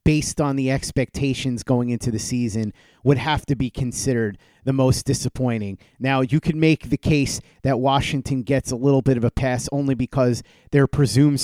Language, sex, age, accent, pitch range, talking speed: English, male, 30-49, American, 125-150 Hz, 185 wpm